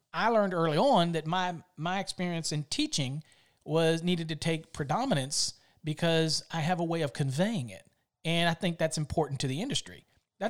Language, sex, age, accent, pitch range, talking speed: English, male, 40-59, American, 150-195 Hz, 185 wpm